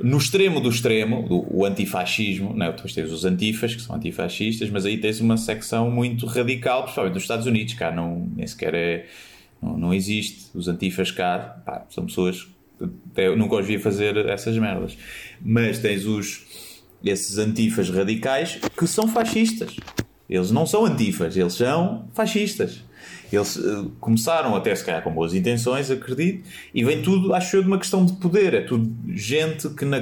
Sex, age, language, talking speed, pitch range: male, 20-39, Portuguese, 180 wpm, 100-135 Hz